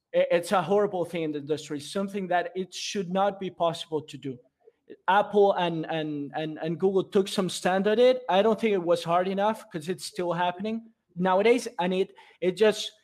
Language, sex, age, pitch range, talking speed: English, male, 30-49, 170-215 Hz, 200 wpm